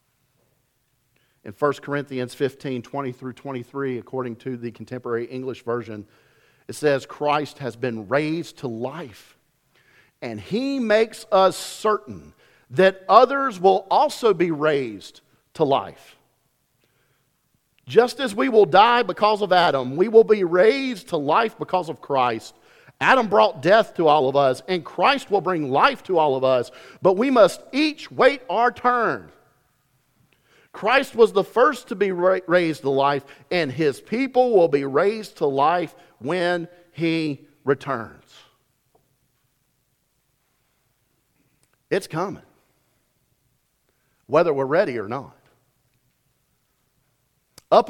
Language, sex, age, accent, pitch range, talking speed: English, male, 50-69, American, 130-195 Hz, 125 wpm